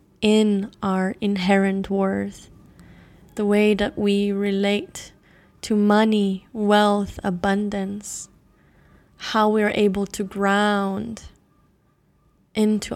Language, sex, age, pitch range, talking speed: English, female, 10-29, 195-225 Hz, 95 wpm